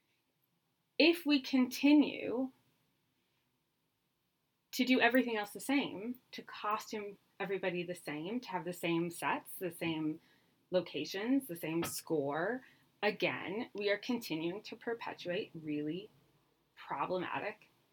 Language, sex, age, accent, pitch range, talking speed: English, female, 30-49, American, 175-245 Hz, 110 wpm